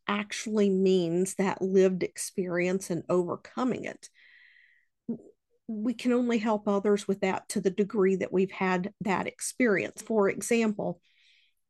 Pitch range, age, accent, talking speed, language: 195-235 Hz, 50-69, American, 130 wpm, English